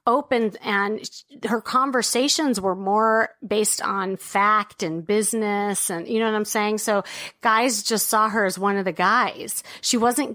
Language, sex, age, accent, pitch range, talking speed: English, female, 30-49, American, 195-240 Hz, 170 wpm